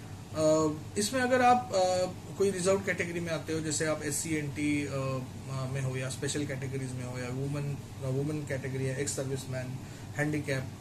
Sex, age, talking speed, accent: male, 20-39, 180 wpm, native